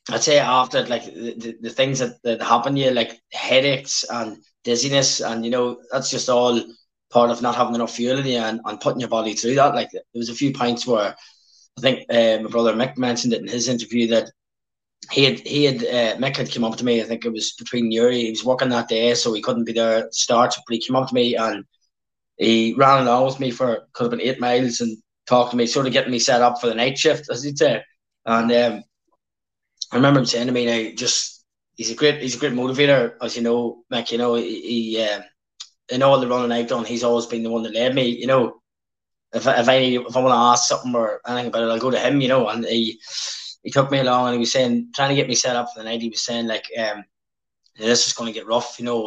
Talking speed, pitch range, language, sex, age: 260 wpm, 115-130 Hz, English, male, 20-39